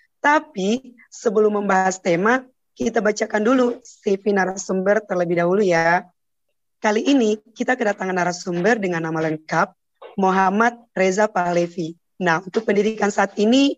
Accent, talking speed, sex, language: native, 120 wpm, female, Indonesian